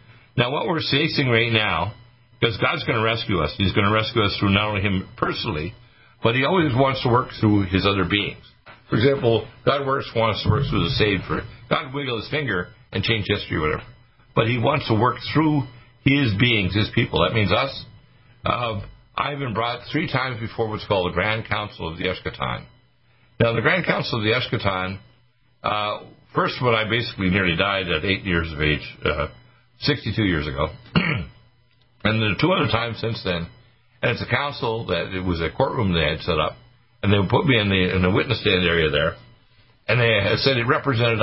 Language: English